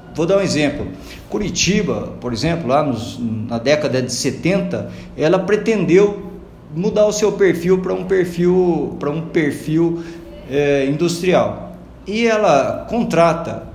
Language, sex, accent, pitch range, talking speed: Portuguese, male, Brazilian, 140-190 Hz, 115 wpm